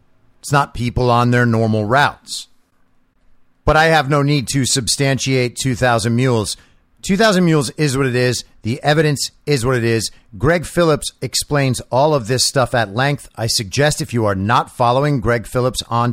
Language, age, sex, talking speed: English, 50-69, male, 175 wpm